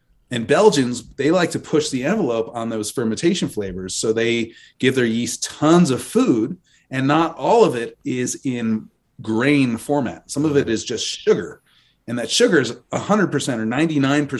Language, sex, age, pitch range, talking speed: English, male, 30-49, 110-145 Hz, 170 wpm